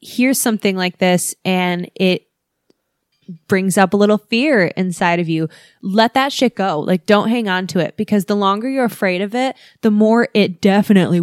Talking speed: 185 wpm